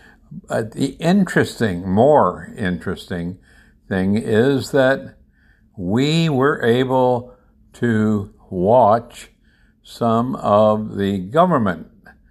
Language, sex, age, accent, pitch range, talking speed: English, male, 60-79, American, 95-125 Hz, 85 wpm